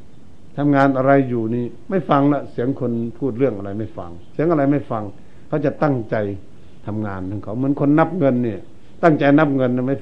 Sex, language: male, Thai